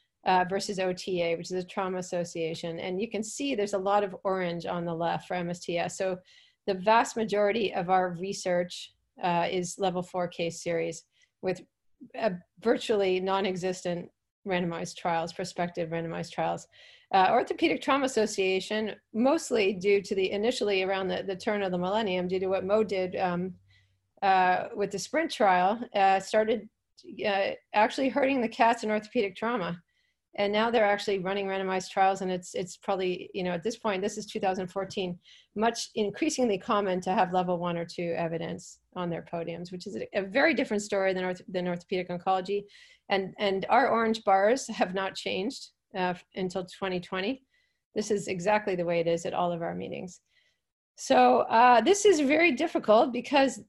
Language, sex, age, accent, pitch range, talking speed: English, female, 40-59, American, 180-220 Hz, 170 wpm